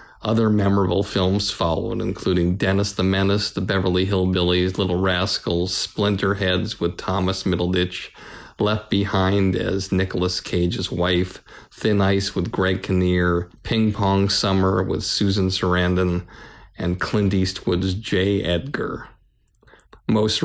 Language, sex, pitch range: English, male, 90-100 Hz